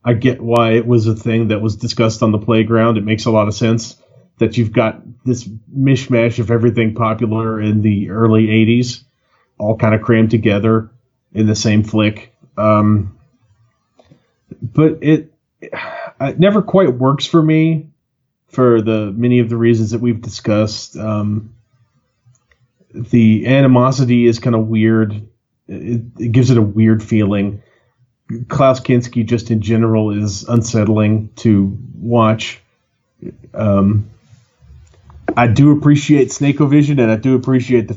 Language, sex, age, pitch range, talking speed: English, male, 30-49, 110-125 Hz, 145 wpm